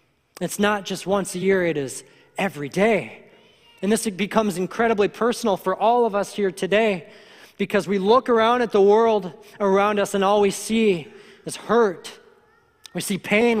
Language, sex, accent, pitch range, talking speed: English, male, American, 160-205 Hz, 170 wpm